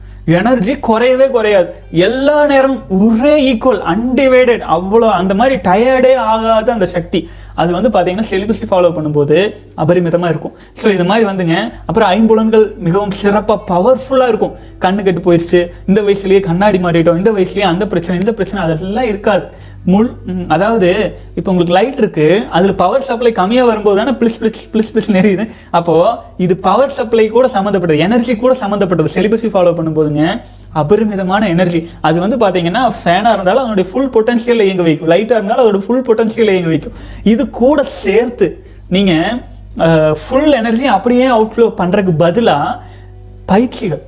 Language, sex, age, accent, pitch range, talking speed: Tamil, male, 30-49, native, 175-235 Hz, 145 wpm